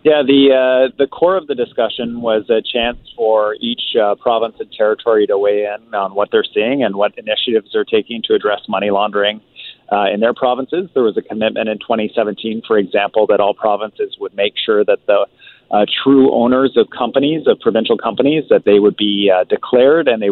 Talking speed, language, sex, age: 205 wpm, English, male, 30-49